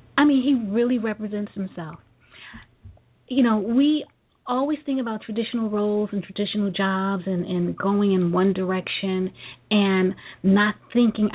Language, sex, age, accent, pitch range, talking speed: English, female, 30-49, American, 180-215 Hz, 140 wpm